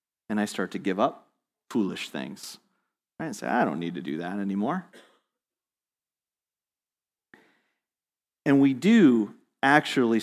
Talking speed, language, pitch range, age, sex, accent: 130 wpm, English, 100-140 Hz, 40-59, male, American